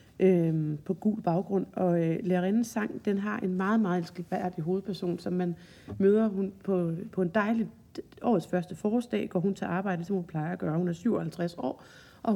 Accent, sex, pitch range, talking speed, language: native, female, 175-210 Hz, 195 wpm, Danish